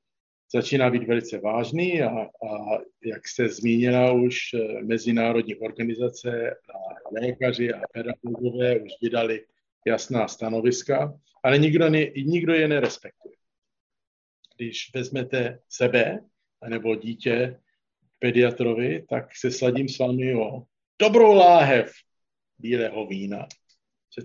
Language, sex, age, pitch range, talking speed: Slovak, male, 50-69, 120-145 Hz, 110 wpm